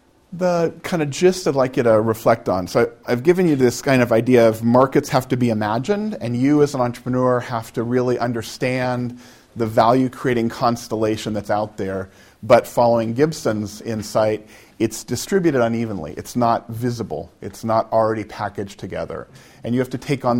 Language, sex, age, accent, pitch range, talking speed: English, male, 40-59, American, 110-130 Hz, 175 wpm